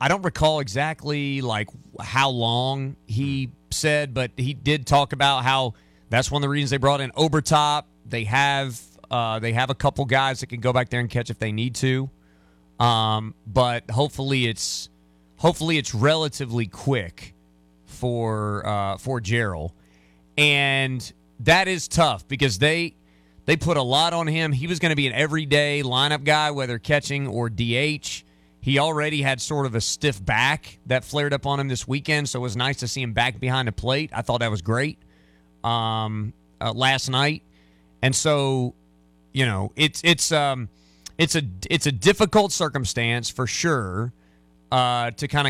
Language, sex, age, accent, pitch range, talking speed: English, male, 30-49, American, 110-145 Hz, 175 wpm